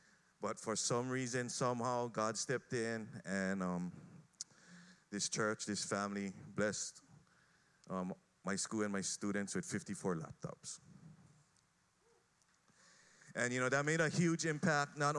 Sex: male